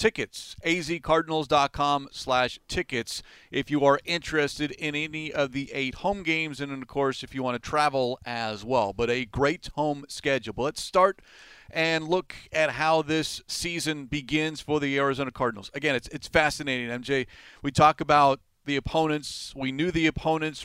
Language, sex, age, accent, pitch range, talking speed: English, male, 40-59, American, 130-155 Hz, 170 wpm